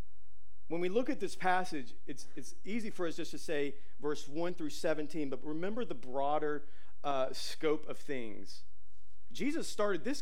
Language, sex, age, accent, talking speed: English, male, 40-59, American, 170 wpm